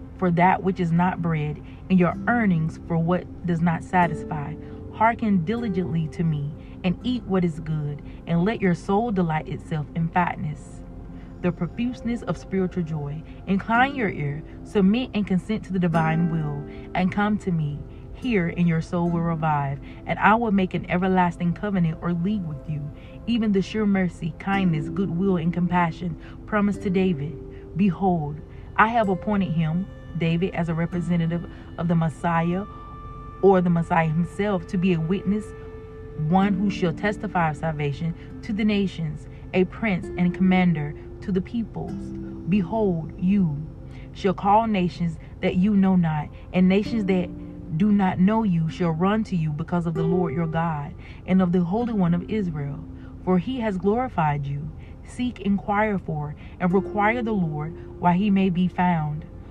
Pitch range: 165-195 Hz